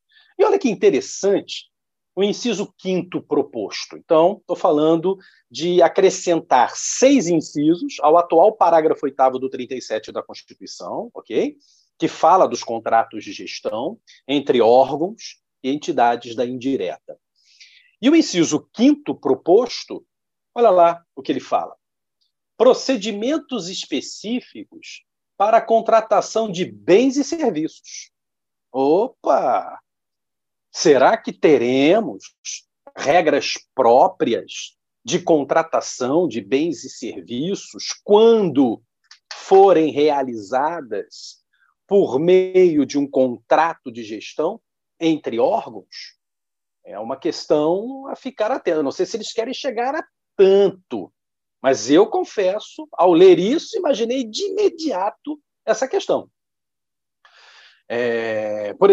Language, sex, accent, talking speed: Portuguese, male, Brazilian, 110 wpm